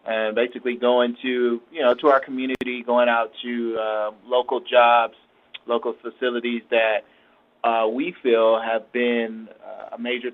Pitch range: 115-135 Hz